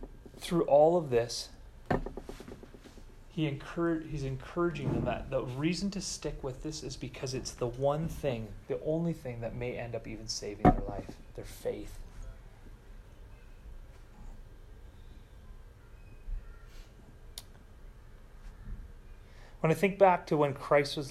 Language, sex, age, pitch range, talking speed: English, male, 30-49, 115-150 Hz, 120 wpm